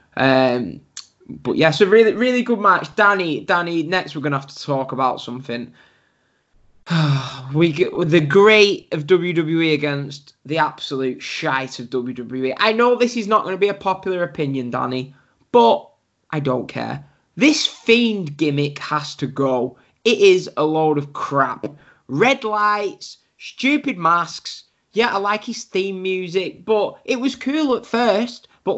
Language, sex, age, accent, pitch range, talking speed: English, male, 10-29, British, 140-210 Hz, 160 wpm